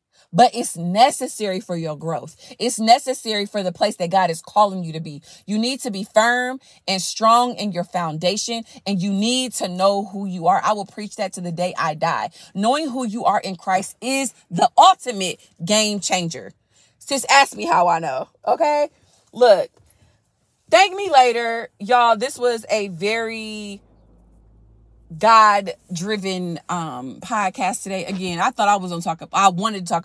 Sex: female